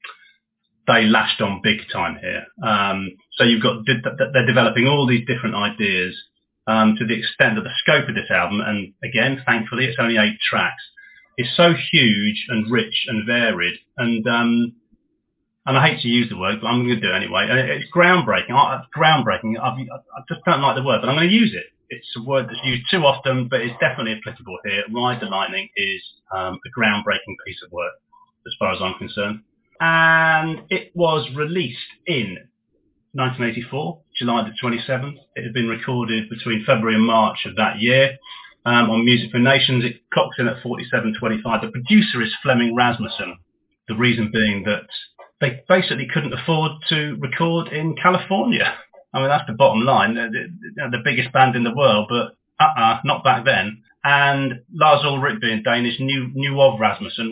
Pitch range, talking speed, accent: 115-145 Hz, 190 wpm, British